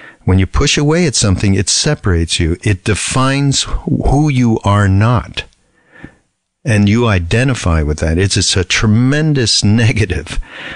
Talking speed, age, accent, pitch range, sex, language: 140 wpm, 50-69, American, 90-115 Hz, male, English